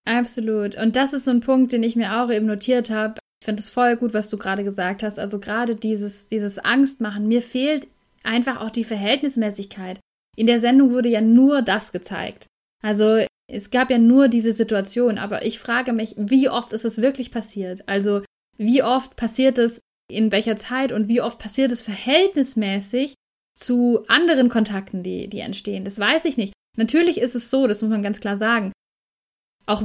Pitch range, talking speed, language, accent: 215-255 Hz, 190 wpm, German, German